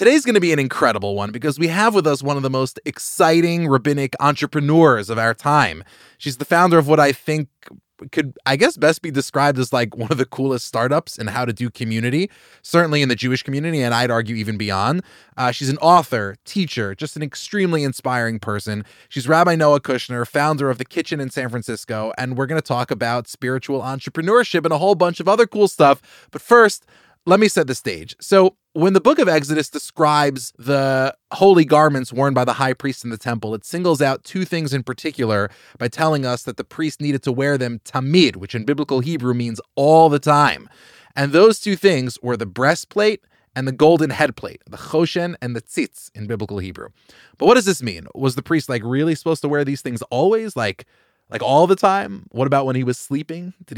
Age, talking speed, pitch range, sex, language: 20-39, 215 wpm, 125-160 Hz, male, English